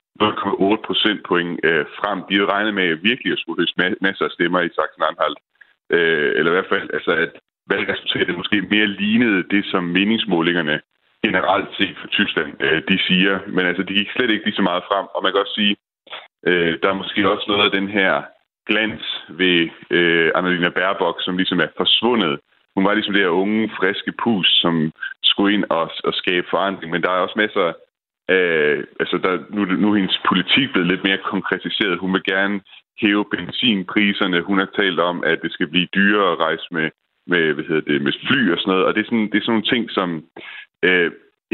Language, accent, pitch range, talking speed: Danish, native, 90-110 Hz, 210 wpm